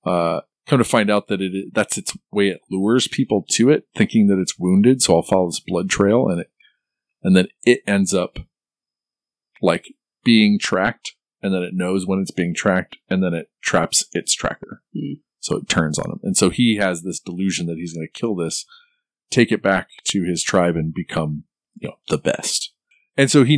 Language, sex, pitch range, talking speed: English, male, 95-125 Hz, 200 wpm